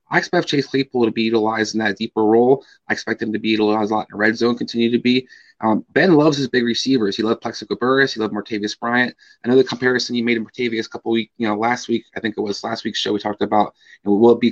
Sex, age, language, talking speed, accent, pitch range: male, 20-39, English, 275 wpm, American, 115-140 Hz